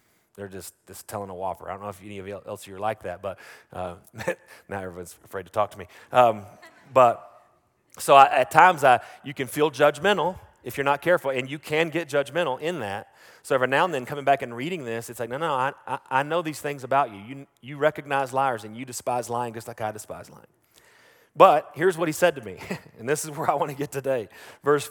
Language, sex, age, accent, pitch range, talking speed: English, male, 30-49, American, 115-150 Hz, 240 wpm